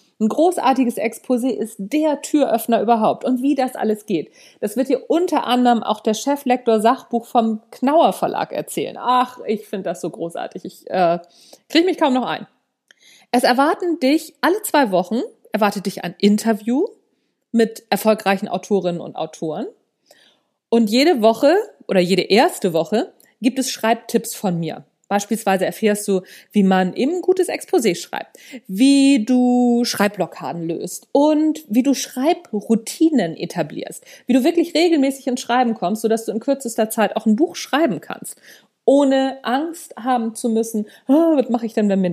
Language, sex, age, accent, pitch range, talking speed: German, female, 40-59, German, 205-275 Hz, 160 wpm